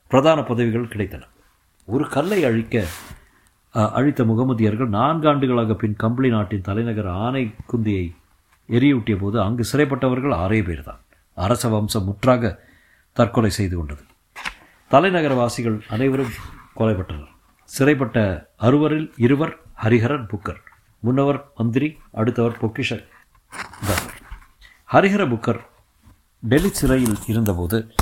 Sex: male